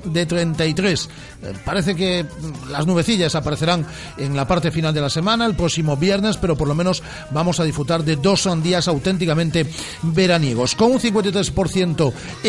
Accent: Spanish